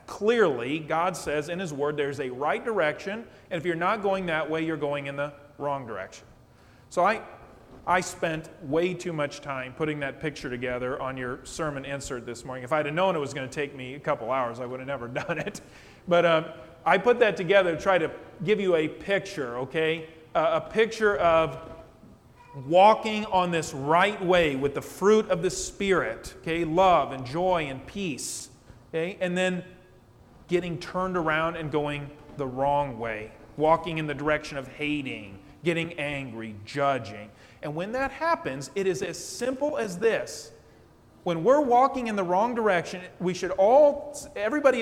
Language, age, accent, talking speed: English, 40-59, American, 180 wpm